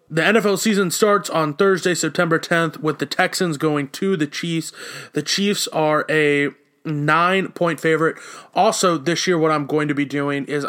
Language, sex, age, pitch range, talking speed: English, male, 20-39, 140-170 Hz, 175 wpm